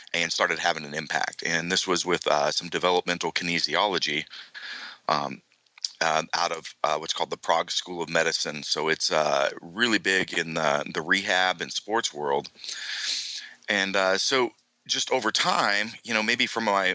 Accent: American